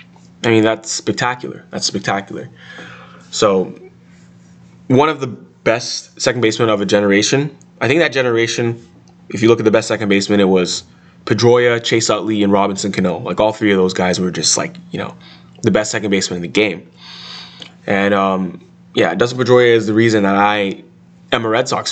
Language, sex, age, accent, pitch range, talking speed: English, male, 20-39, American, 95-115 Hz, 185 wpm